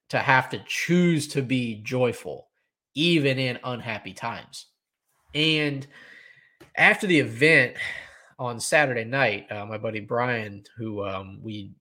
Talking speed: 125 wpm